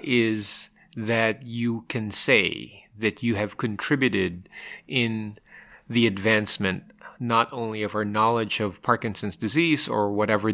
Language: English